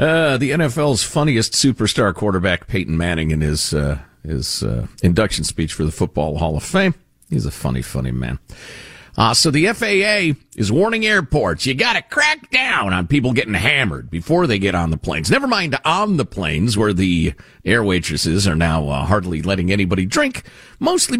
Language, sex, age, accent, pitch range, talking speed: English, male, 50-69, American, 90-150 Hz, 185 wpm